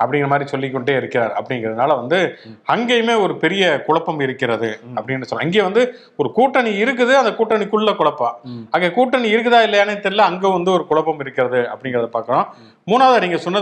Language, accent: English, Indian